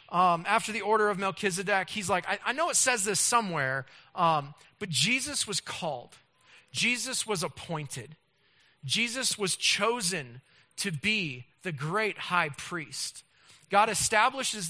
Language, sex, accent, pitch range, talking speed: English, male, American, 140-200 Hz, 140 wpm